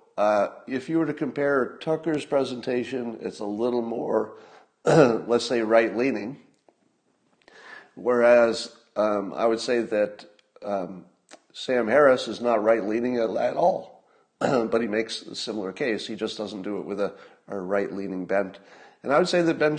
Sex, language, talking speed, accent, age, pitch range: male, English, 160 wpm, American, 50-69, 110-150 Hz